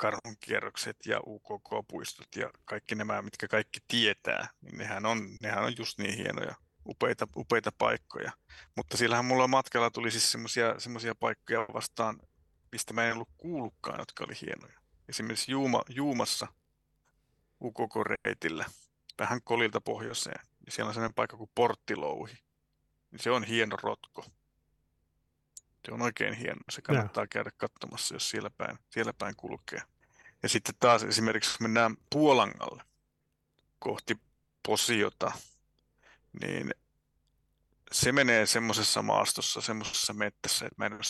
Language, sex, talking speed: Finnish, male, 130 wpm